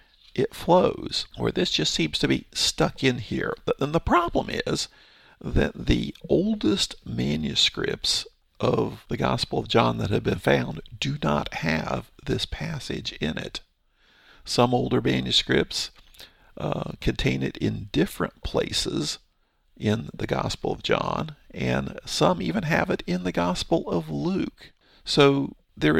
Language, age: English, 50-69